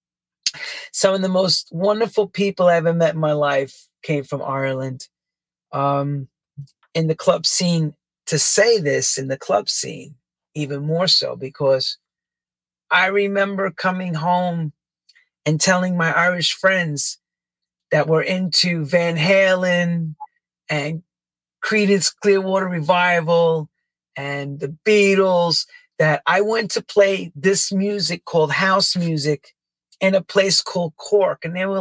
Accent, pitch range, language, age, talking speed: American, 155-195 Hz, English, 40-59, 130 wpm